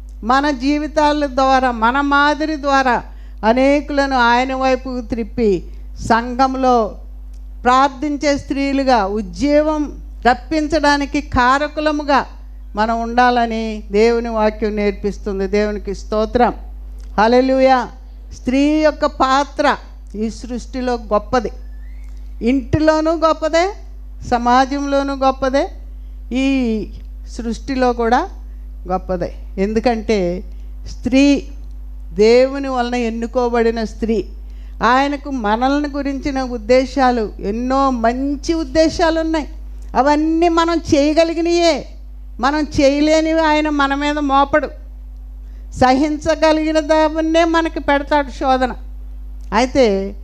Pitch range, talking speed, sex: 225-295 Hz, 80 wpm, female